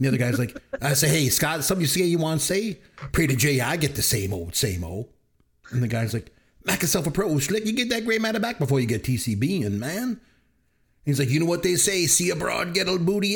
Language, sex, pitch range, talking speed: English, male, 125-185 Hz, 245 wpm